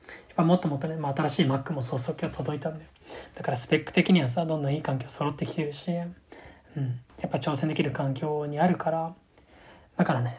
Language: Japanese